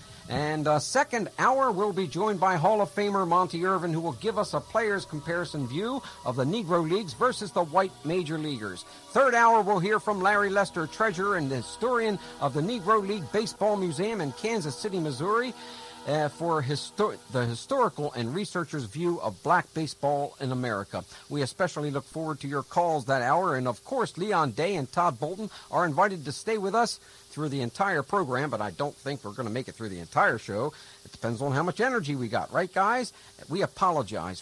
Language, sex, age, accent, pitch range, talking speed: English, male, 60-79, American, 135-200 Hz, 200 wpm